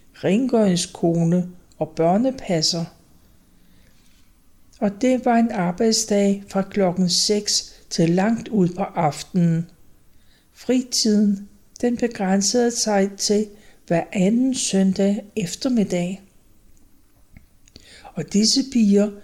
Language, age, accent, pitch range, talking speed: Danish, 60-79, native, 180-220 Hz, 90 wpm